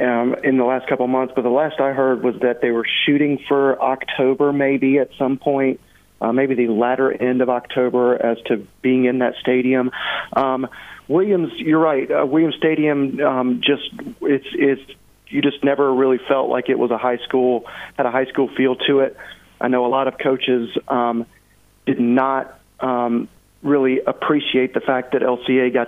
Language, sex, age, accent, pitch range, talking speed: English, male, 40-59, American, 120-135 Hz, 195 wpm